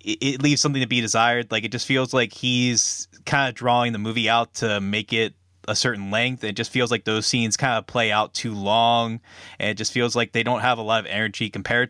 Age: 20-39